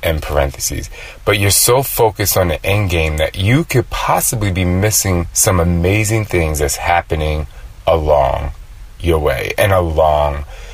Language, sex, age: English, male, 30-49